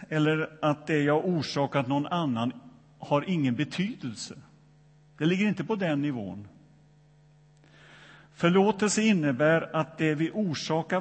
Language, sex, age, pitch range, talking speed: Swedish, male, 50-69, 150-180 Hz, 120 wpm